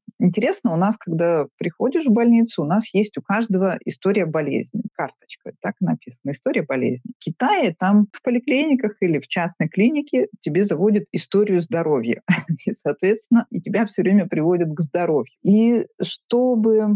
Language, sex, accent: Russian, female, native